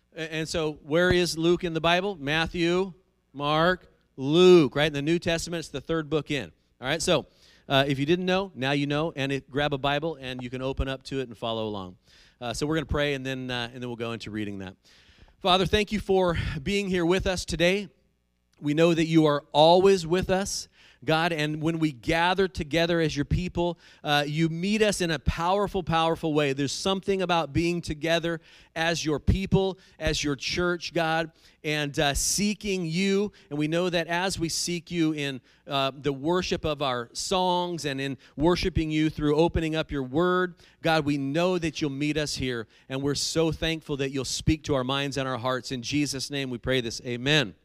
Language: English